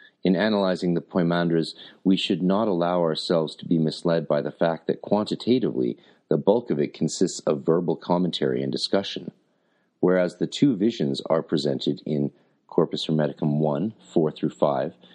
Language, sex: English, male